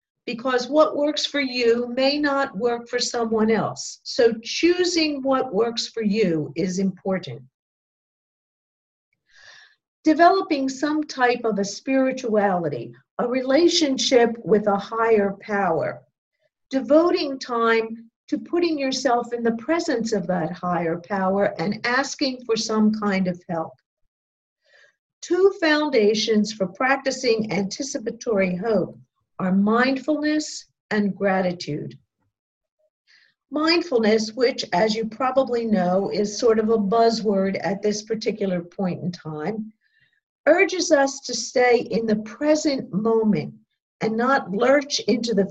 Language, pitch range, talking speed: English, 200-270 Hz, 120 wpm